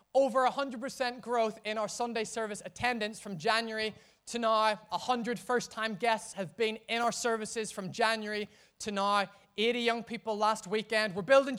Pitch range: 200-230 Hz